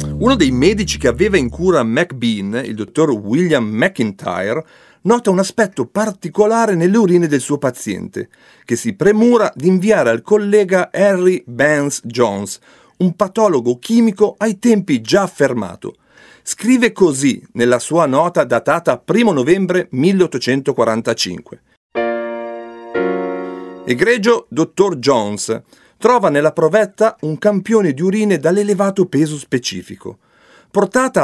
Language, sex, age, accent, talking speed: Italian, male, 40-59, native, 115 wpm